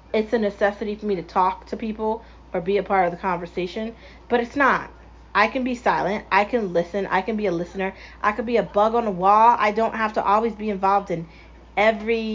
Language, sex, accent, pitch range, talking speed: English, female, American, 190-225 Hz, 235 wpm